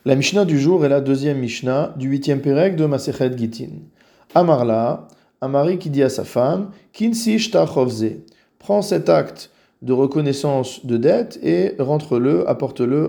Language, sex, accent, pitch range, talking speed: French, male, French, 120-155 Hz, 165 wpm